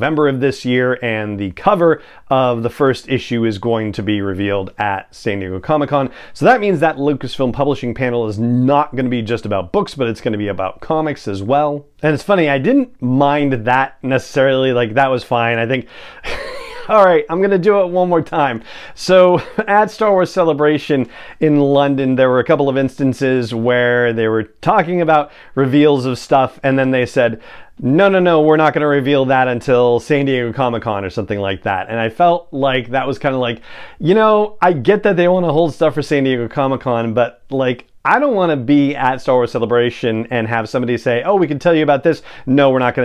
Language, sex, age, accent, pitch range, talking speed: English, male, 30-49, American, 120-155 Hz, 215 wpm